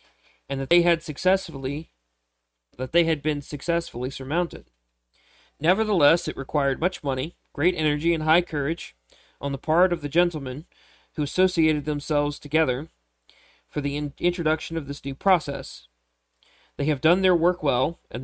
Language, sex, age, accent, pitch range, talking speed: English, male, 40-59, American, 130-165 Hz, 150 wpm